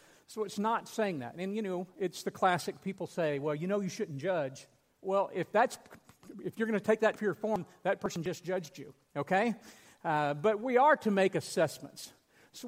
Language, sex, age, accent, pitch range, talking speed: English, male, 50-69, American, 160-210 Hz, 215 wpm